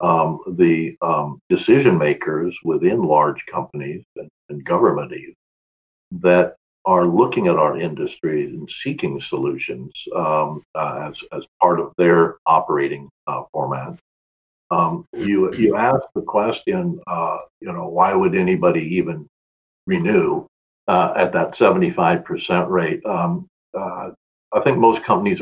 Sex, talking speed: male, 130 wpm